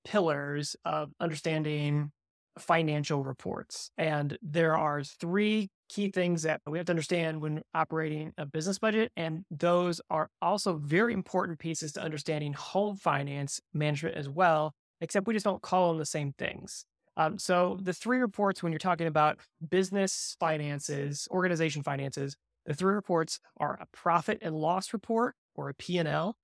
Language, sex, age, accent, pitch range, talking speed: English, male, 20-39, American, 155-190 Hz, 160 wpm